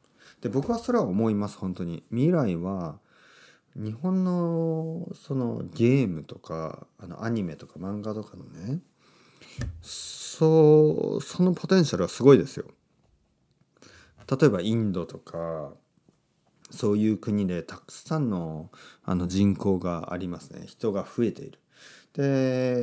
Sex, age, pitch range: male, 40-59, 90-150 Hz